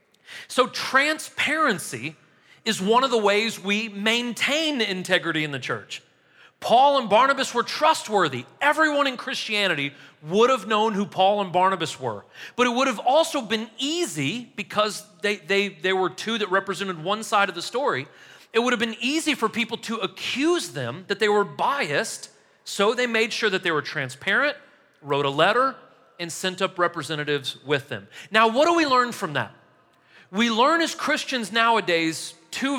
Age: 40-59